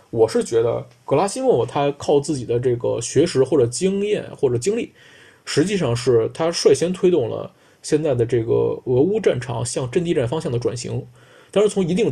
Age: 20-39